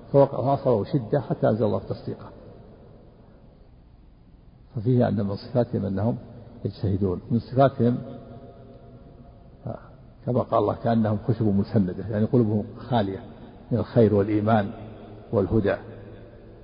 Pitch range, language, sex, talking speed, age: 105-125 Hz, Arabic, male, 95 wpm, 60-79